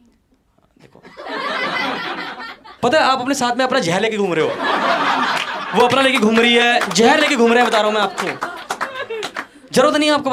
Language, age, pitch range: Hindi, 20-39, 225-290 Hz